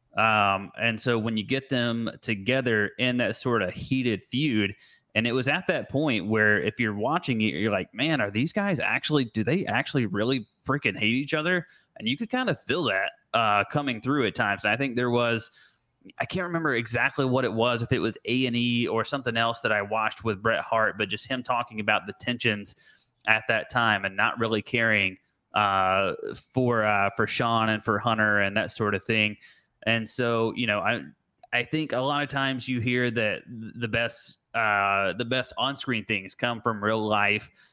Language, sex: English, male